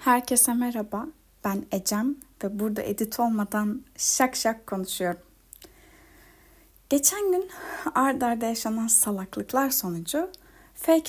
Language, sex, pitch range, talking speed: Turkish, female, 225-320 Hz, 105 wpm